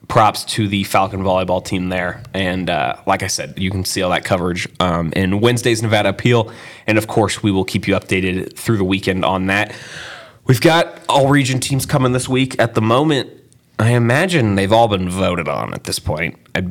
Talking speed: 205 wpm